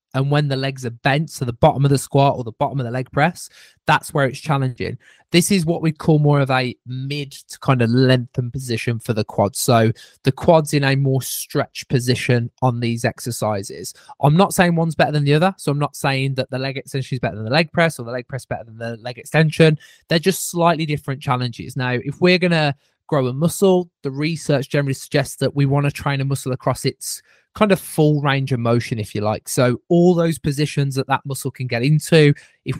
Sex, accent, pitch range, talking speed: male, British, 125-150 Hz, 235 wpm